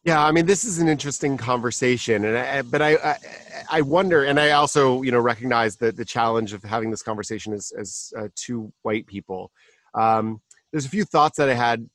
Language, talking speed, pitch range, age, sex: English, 210 wpm, 110-135 Hz, 30-49, male